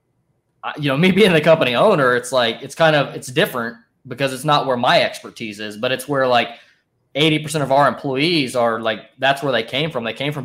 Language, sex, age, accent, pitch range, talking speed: English, male, 20-39, American, 115-140 Hz, 225 wpm